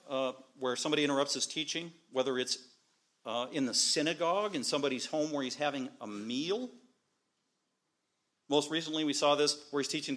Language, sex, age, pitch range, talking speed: English, male, 40-59, 135-165 Hz, 165 wpm